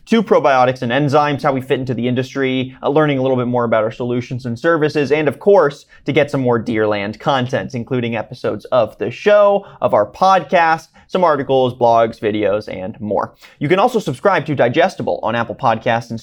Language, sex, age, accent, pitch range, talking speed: English, male, 30-49, American, 125-170 Hz, 200 wpm